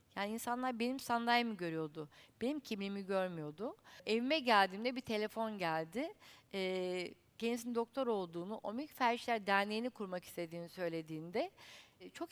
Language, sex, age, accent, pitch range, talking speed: Turkish, female, 60-79, native, 190-255 Hz, 110 wpm